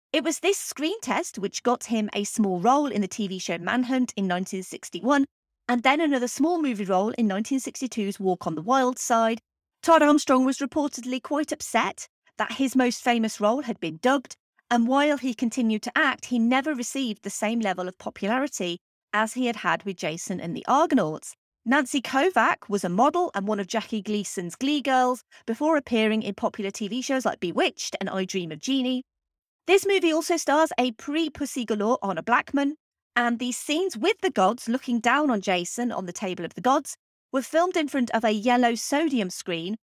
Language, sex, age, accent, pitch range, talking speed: English, female, 30-49, British, 210-285 Hz, 190 wpm